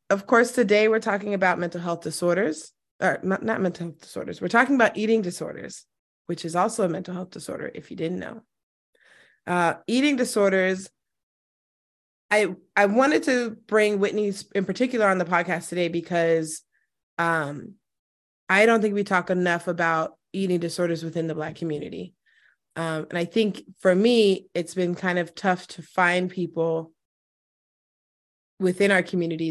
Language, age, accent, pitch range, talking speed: English, 20-39, American, 170-205 Hz, 160 wpm